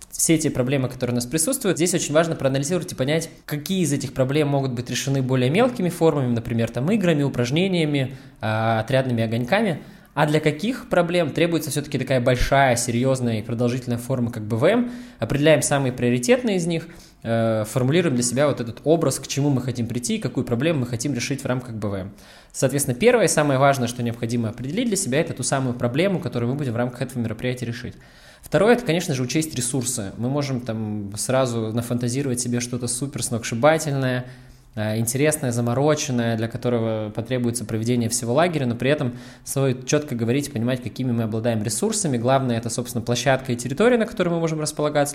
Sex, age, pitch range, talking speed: male, 20-39, 120-150 Hz, 185 wpm